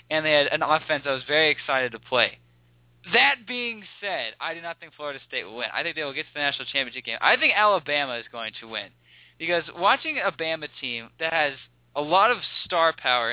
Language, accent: English, American